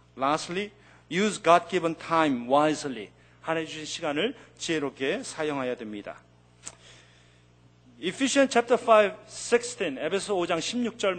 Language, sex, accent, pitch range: Korean, male, native, 130-210 Hz